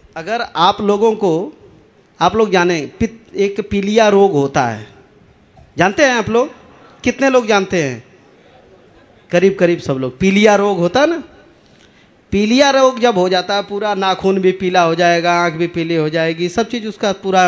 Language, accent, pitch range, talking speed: Hindi, native, 170-225 Hz, 175 wpm